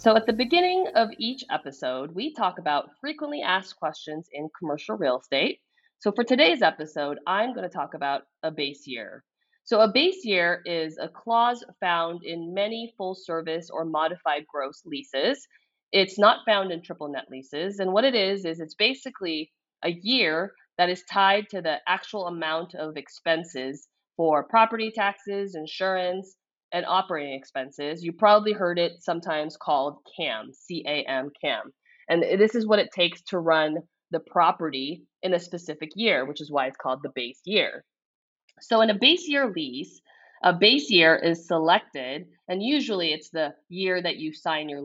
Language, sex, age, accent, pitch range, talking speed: English, female, 30-49, American, 155-215 Hz, 175 wpm